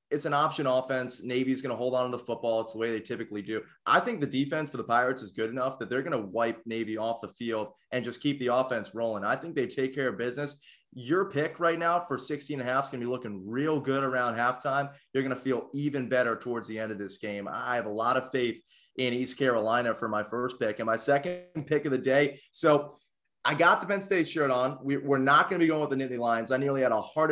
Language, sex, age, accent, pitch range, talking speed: English, male, 20-39, American, 115-145 Hz, 275 wpm